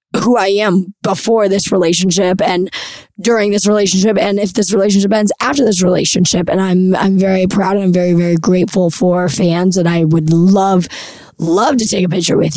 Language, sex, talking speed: English, female, 190 wpm